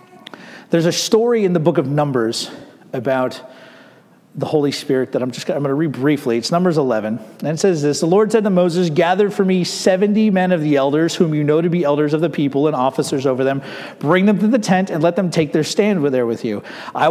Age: 40-59